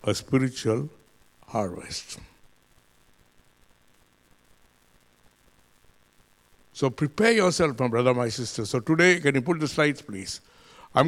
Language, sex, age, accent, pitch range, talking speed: English, male, 60-79, Indian, 135-190 Hz, 105 wpm